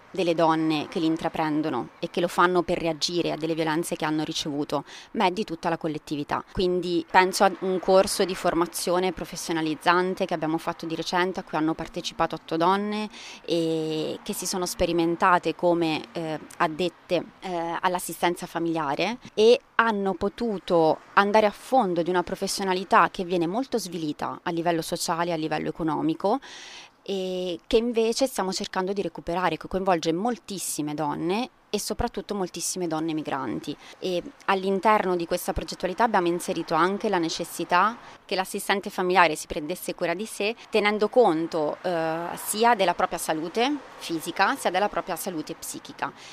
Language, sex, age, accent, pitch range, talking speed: Italian, female, 30-49, native, 165-195 Hz, 150 wpm